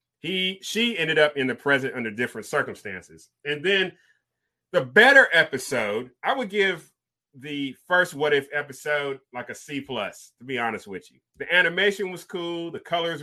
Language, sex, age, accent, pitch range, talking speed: English, male, 30-49, American, 135-190 Hz, 170 wpm